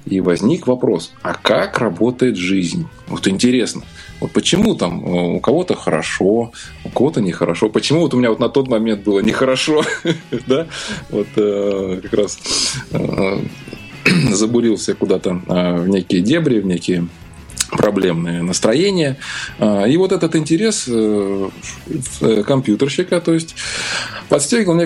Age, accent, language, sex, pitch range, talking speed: 20-39, native, Russian, male, 105-140 Hz, 120 wpm